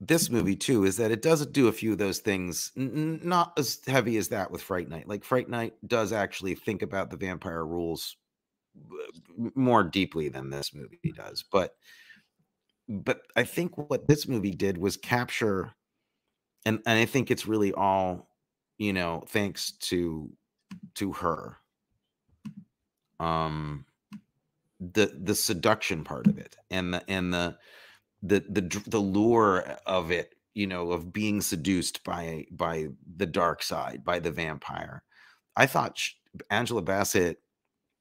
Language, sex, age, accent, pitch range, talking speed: English, male, 30-49, American, 90-125 Hz, 150 wpm